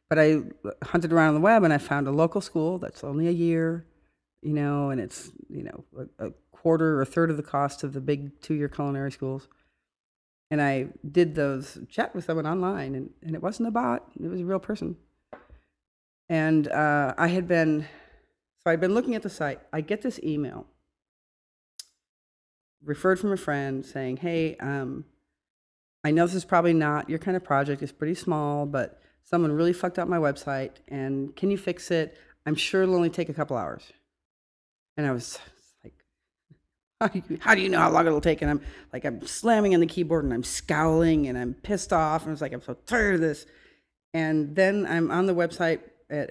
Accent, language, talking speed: American, English, 200 wpm